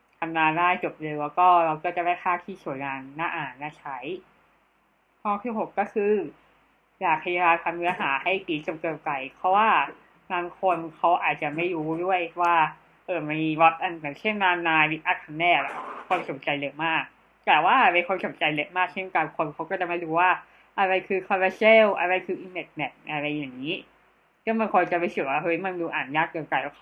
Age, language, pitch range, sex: 20-39, Thai, 160-190 Hz, female